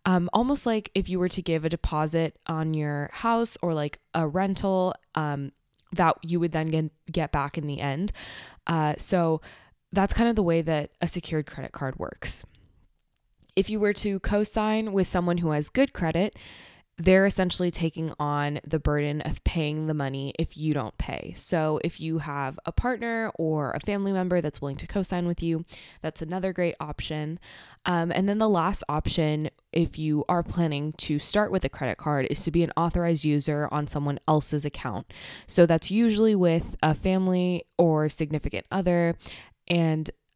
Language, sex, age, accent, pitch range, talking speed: English, female, 20-39, American, 150-180 Hz, 180 wpm